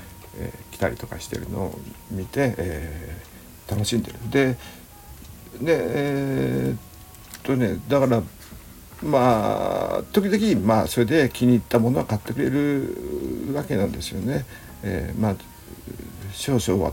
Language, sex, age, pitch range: Japanese, male, 60-79, 95-125 Hz